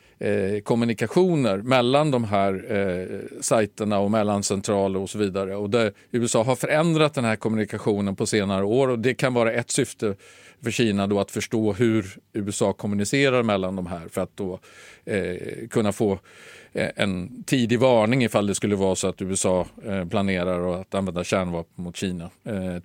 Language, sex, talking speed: Swedish, male, 175 wpm